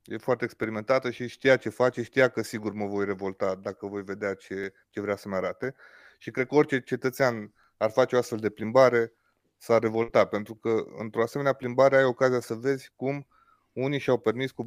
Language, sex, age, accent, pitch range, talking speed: Romanian, male, 30-49, native, 110-130 Hz, 210 wpm